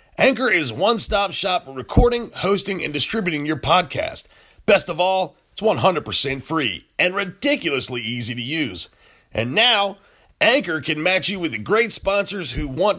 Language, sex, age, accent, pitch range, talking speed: English, male, 30-49, American, 140-210 Hz, 155 wpm